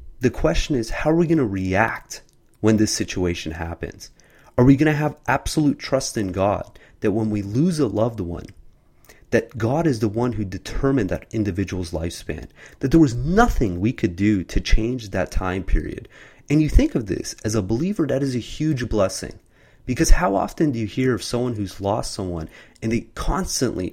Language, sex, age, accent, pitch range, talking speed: English, male, 30-49, American, 95-130 Hz, 195 wpm